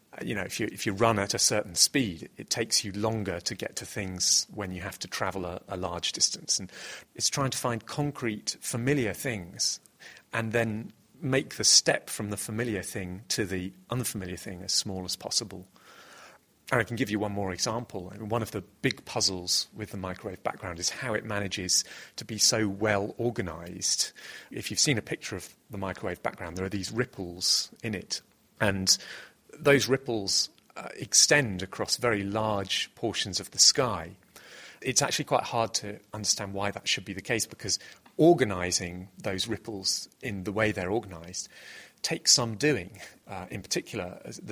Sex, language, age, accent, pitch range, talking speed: male, English, 40-59, British, 95-115 Hz, 180 wpm